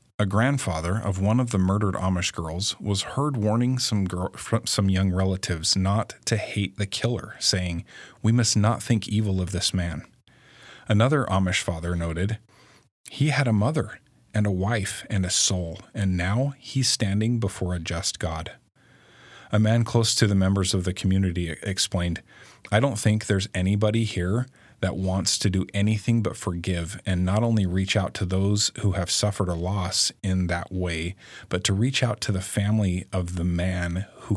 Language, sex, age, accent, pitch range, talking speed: English, male, 40-59, American, 90-110 Hz, 180 wpm